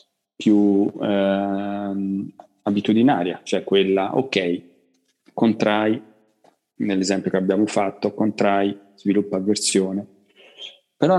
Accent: native